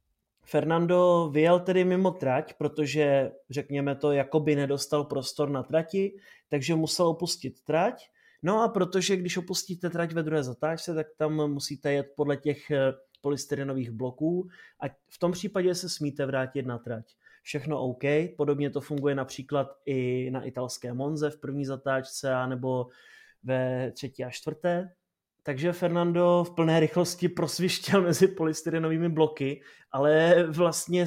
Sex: male